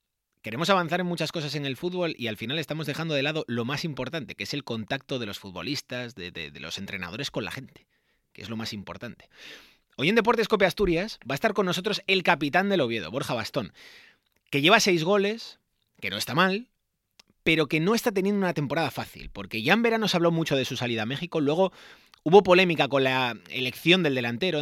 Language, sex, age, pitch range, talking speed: Spanish, male, 30-49, 115-170 Hz, 220 wpm